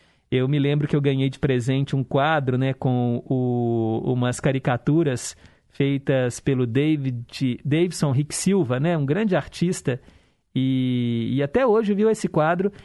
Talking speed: 150 wpm